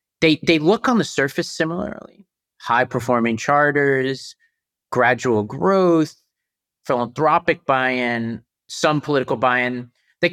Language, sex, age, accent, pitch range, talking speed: English, male, 30-49, American, 115-140 Hz, 100 wpm